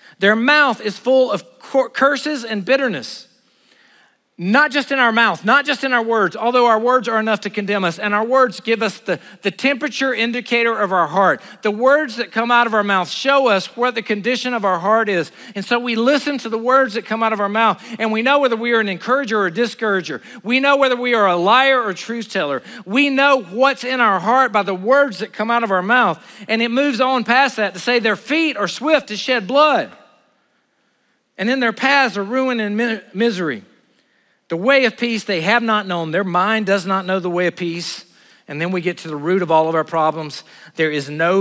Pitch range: 180-255 Hz